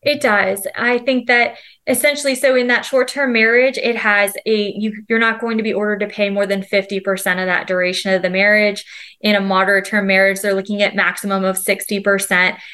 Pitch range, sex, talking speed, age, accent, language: 195-225 Hz, female, 215 wpm, 20-39, American, English